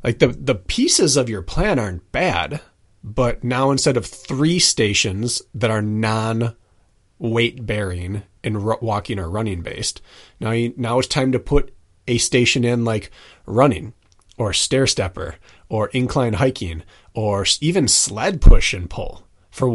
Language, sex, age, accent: English, male, 30-49, American